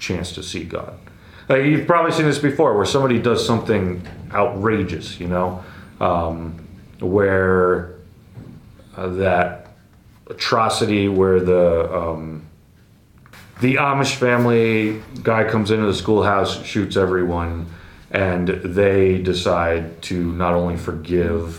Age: 30-49